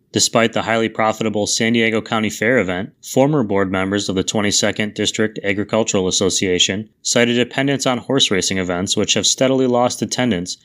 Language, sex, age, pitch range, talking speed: English, male, 20-39, 100-120 Hz, 165 wpm